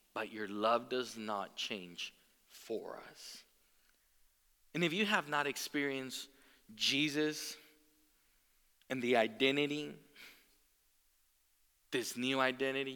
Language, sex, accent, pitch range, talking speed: English, male, American, 100-155 Hz, 95 wpm